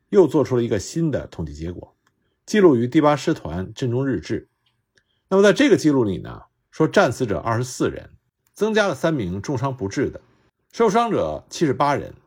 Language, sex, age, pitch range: Chinese, male, 50-69, 105-170 Hz